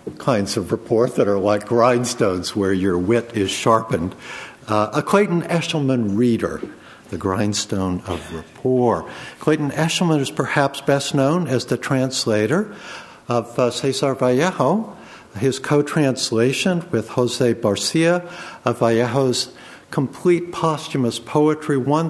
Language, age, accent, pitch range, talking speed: English, 60-79, American, 110-145 Hz, 120 wpm